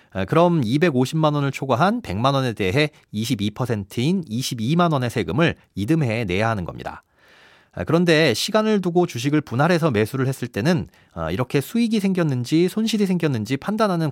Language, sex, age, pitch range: Korean, male, 40-59, 125-185 Hz